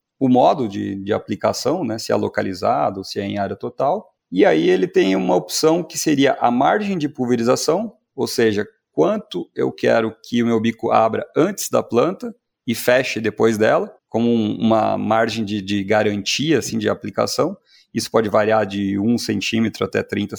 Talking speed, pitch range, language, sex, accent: 175 wpm, 110-160 Hz, Portuguese, male, Brazilian